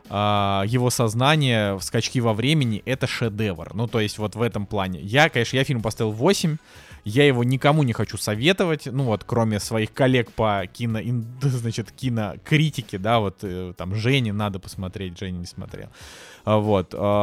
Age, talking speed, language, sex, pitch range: 20-39, 165 wpm, Russian, male, 105-130 Hz